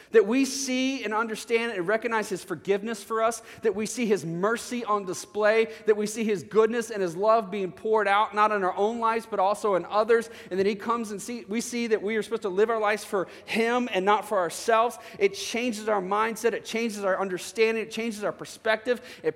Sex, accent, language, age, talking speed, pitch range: male, American, English, 30-49, 225 wpm, 150-220 Hz